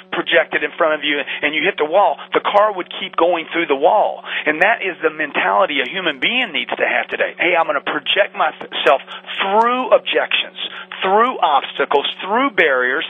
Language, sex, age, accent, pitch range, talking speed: English, male, 40-59, American, 155-205 Hz, 190 wpm